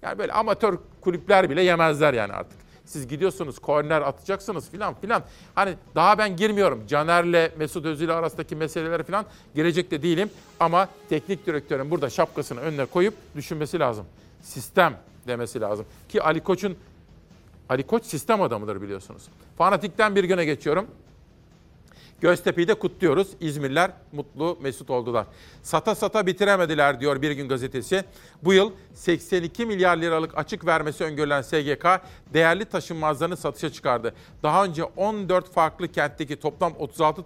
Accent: native